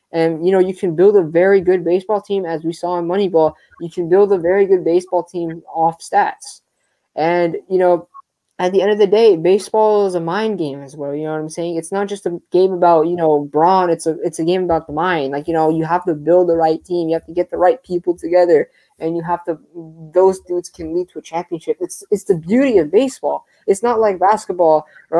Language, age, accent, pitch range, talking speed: English, 20-39, American, 160-190 Hz, 250 wpm